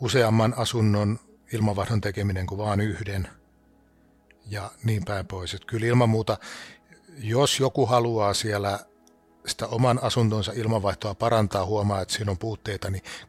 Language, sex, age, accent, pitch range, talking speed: Finnish, male, 60-79, native, 100-115 Hz, 135 wpm